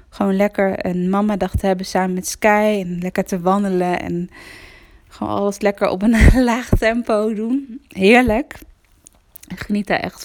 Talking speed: 160 wpm